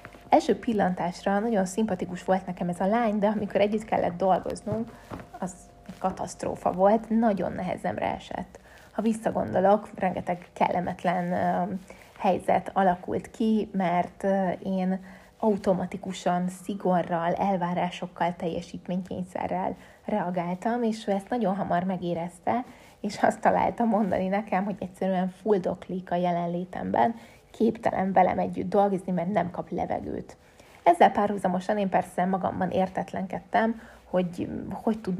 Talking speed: 115 wpm